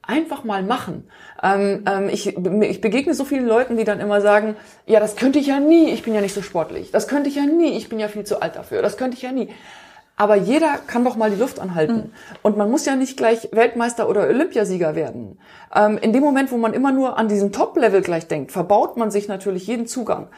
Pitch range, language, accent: 195-235 Hz, German, German